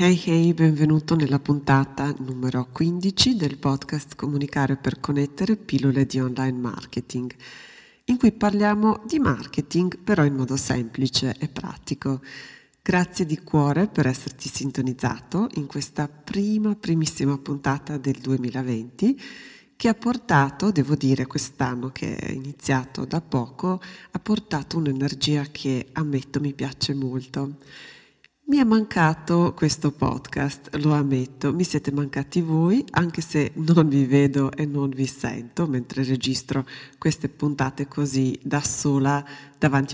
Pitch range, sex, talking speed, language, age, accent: 135-165 Hz, female, 130 wpm, Italian, 40-59, native